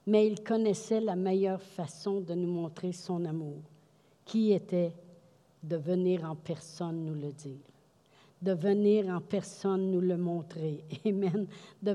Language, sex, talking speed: French, female, 145 wpm